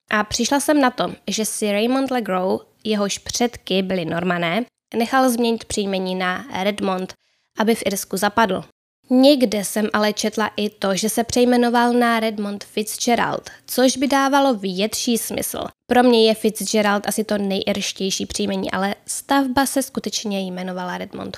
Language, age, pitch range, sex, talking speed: Czech, 10-29, 200-245 Hz, female, 150 wpm